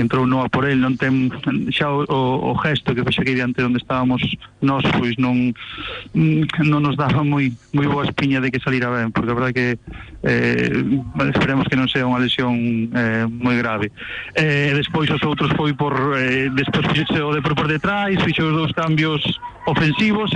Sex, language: male, Spanish